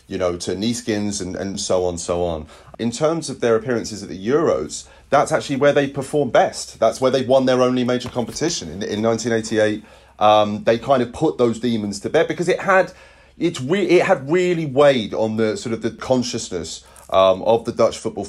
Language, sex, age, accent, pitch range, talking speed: English, male, 30-49, British, 105-130 Hz, 215 wpm